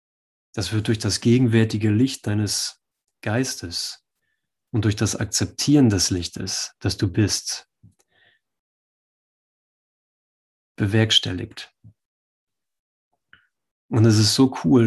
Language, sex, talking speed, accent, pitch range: German, male, 95 wpm, German, 100-115 Hz